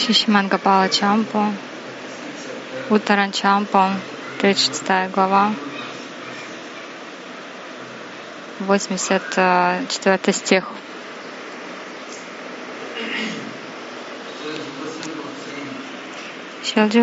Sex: female